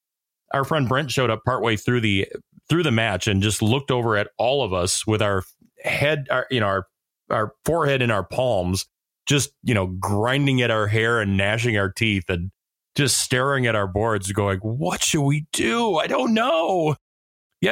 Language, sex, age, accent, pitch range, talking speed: English, male, 30-49, American, 100-135 Hz, 195 wpm